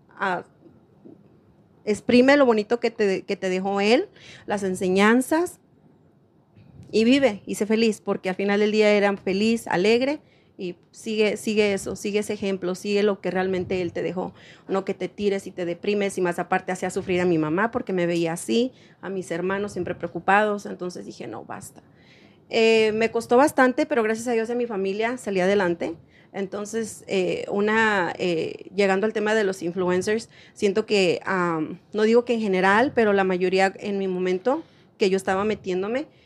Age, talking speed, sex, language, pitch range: 30-49, 180 wpm, female, English, 185-225 Hz